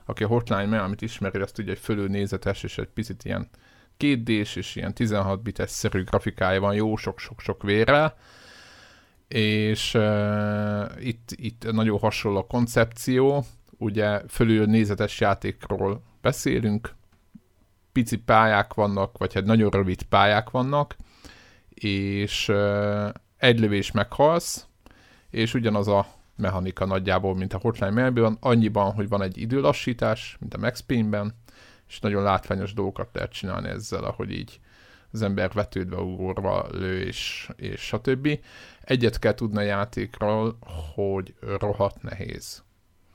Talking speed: 130 wpm